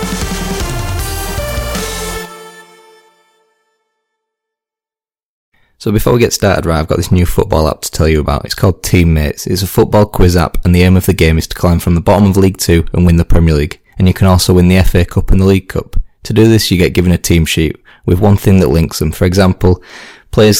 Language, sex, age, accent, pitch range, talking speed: English, male, 20-39, British, 85-100 Hz, 215 wpm